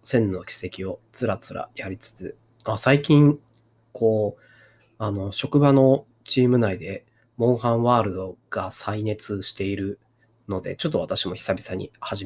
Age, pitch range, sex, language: 30-49, 110-140 Hz, male, Japanese